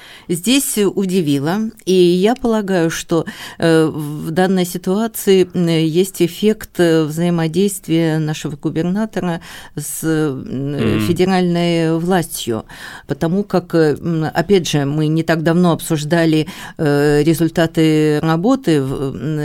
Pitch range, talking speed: 150-185 Hz, 85 wpm